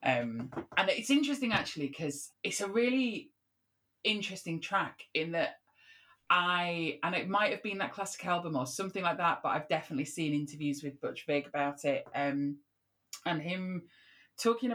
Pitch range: 140-175 Hz